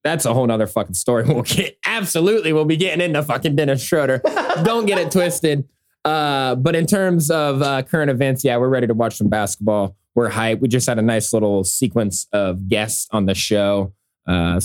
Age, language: 20-39, English